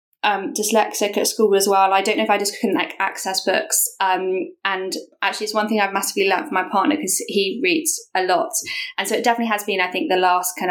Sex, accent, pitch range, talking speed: female, British, 180-235 Hz, 245 wpm